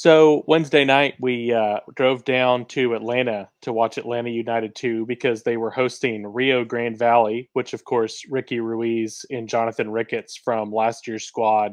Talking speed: 170 wpm